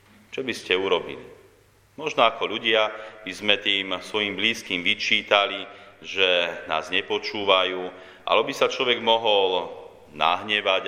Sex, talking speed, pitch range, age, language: male, 120 wpm, 100-120 Hz, 40-59, Slovak